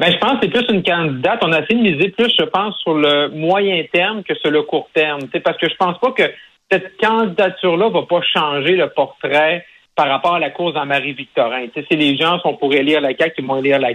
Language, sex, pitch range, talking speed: French, male, 145-175 Hz, 255 wpm